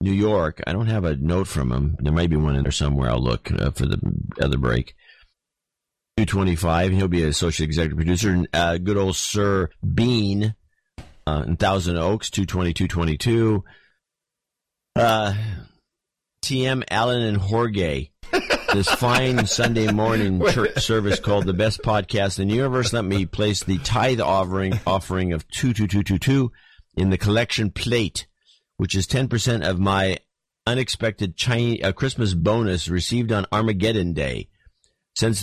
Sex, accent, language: male, American, English